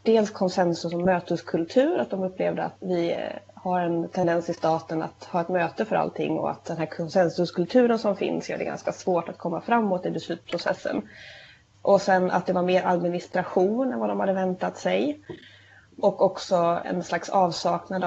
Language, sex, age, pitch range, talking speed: Swedish, female, 20-39, 170-200 Hz, 180 wpm